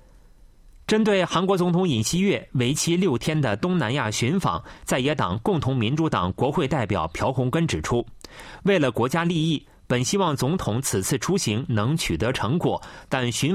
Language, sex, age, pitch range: Chinese, male, 30-49, 120-170 Hz